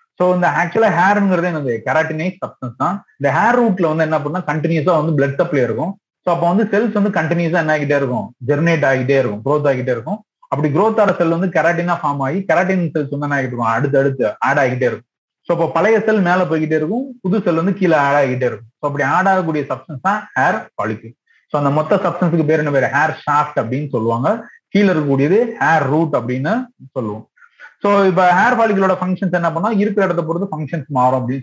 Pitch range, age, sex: 140-190 Hz, 30-49, male